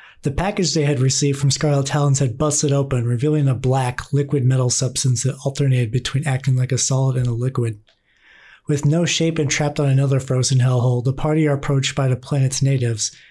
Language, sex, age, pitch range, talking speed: English, male, 30-49, 125-145 Hz, 200 wpm